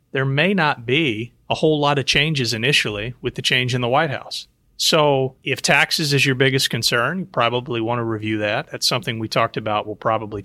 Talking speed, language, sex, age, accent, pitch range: 210 wpm, English, male, 30-49, American, 115-145 Hz